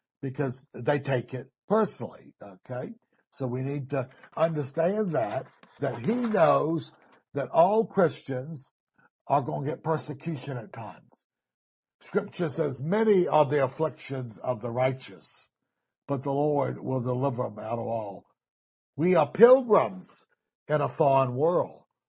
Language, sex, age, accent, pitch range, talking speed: English, male, 60-79, American, 135-185 Hz, 135 wpm